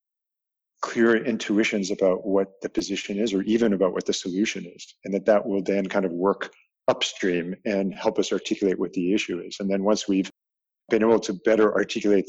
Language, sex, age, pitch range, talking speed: English, male, 40-59, 95-115 Hz, 195 wpm